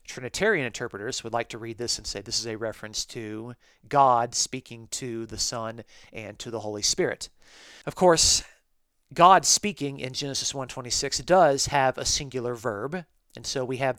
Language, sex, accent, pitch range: English, male, American, 115-140 Hz